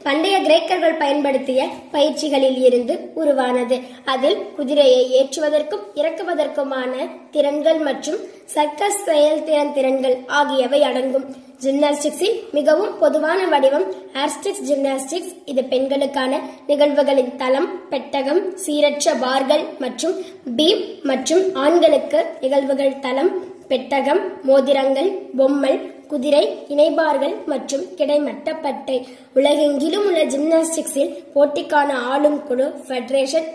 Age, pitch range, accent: 20-39, 270-310 Hz, native